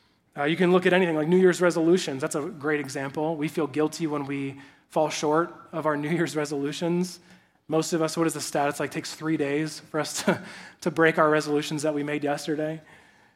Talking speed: 220 wpm